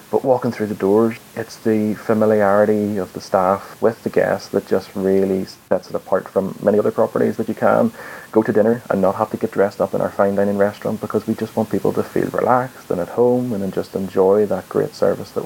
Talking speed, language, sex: 235 wpm, English, male